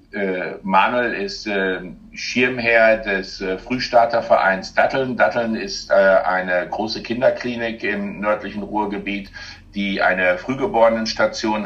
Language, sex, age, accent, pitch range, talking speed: German, male, 60-79, German, 95-110 Hz, 85 wpm